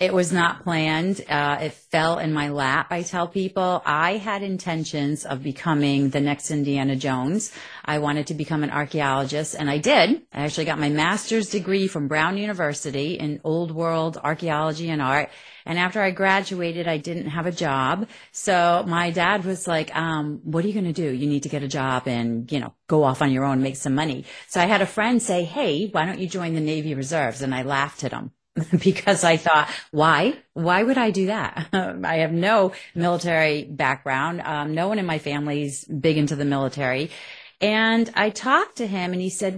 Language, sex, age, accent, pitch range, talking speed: English, female, 30-49, American, 150-190 Hz, 205 wpm